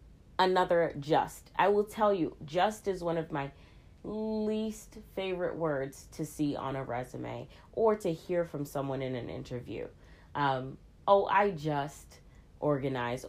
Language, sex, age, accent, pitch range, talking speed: English, female, 30-49, American, 140-195 Hz, 145 wpm